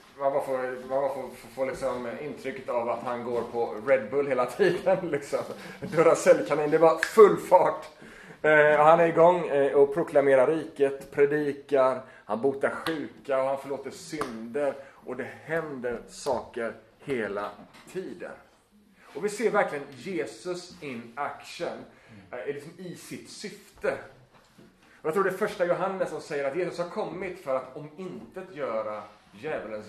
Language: Swedish